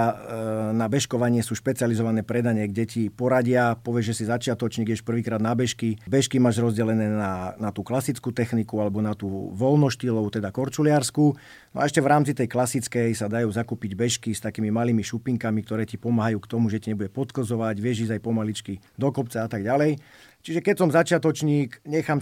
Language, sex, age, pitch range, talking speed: Slovak, male, 40-59, 105-120 Hz, 185 wpm